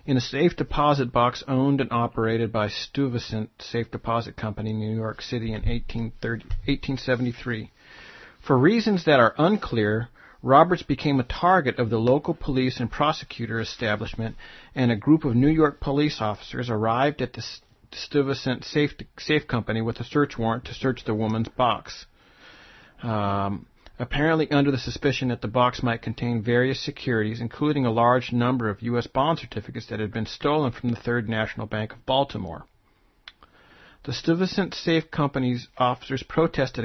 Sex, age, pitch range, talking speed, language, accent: male, 40-59, 115-140 Hz, 155 wpm, English, American